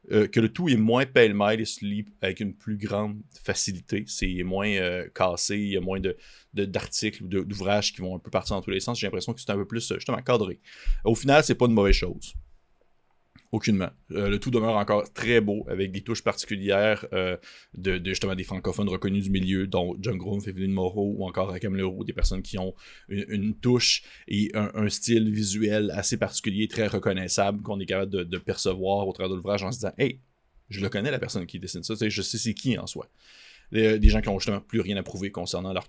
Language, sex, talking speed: French, male, 230 wpm